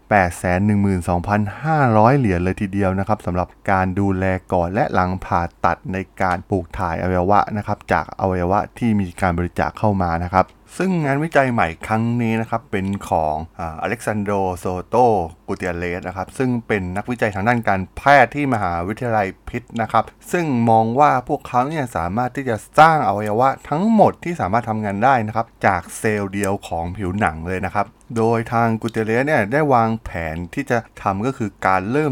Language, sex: Thai, male